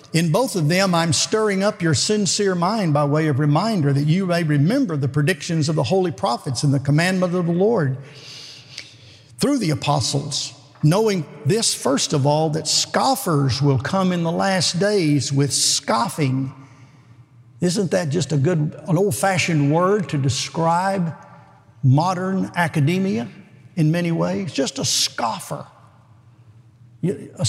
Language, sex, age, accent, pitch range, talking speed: English, male, 50-69, American, 135-170 Hz, 145 wpm